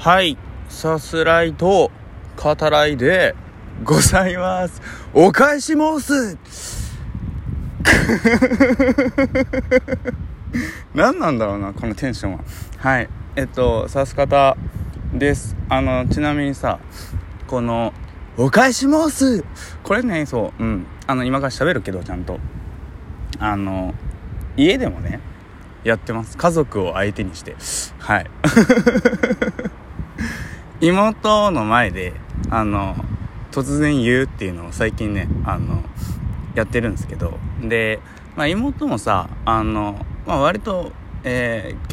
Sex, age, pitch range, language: male, 20-39, 95-150 Hz, Japanese